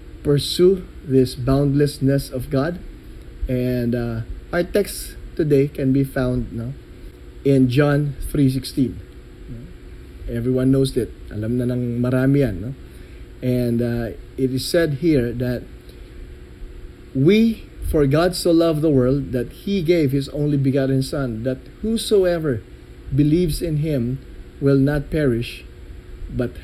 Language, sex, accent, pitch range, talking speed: Filipino, male, native, 125-155 Hz, 125 wpm